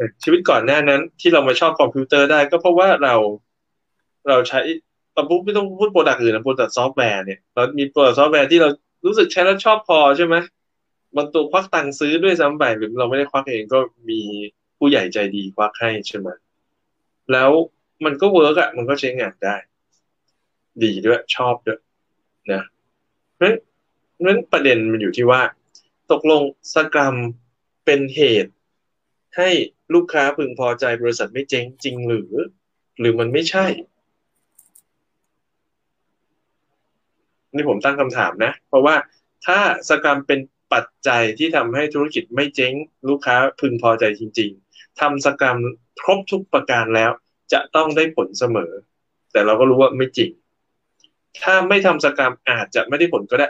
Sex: male